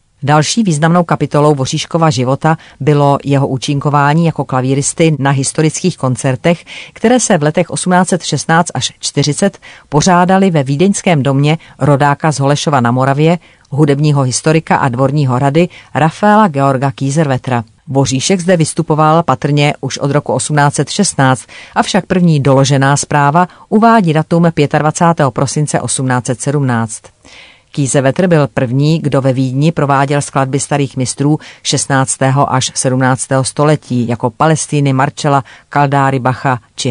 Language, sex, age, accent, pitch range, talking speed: Czech, female, 40-59, native, 130-160 Hz, 120 wpm